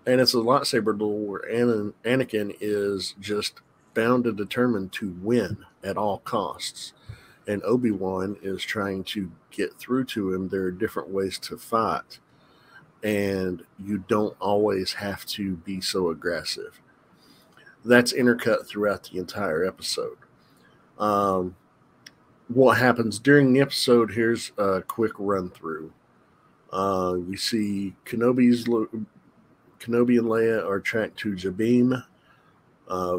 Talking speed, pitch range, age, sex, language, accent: 130 wpm, 95-115 Hz, 50-69, male, English, American